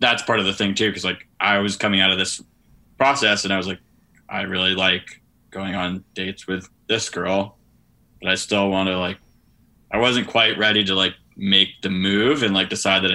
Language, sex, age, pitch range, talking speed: English, male, 20-39, 95-100 Hz, 215 wpm